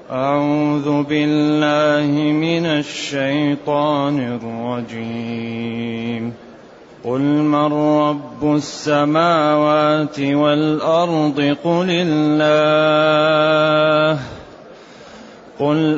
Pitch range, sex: 150-170 Hz, male